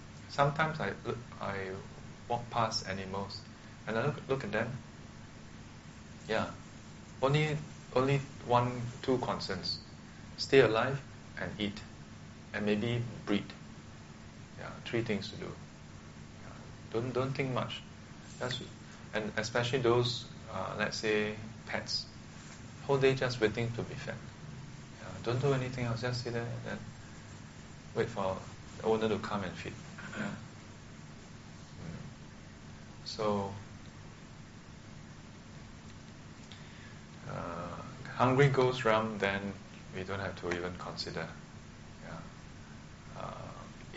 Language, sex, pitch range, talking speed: English, male, 95-120 Hz, 105 wpm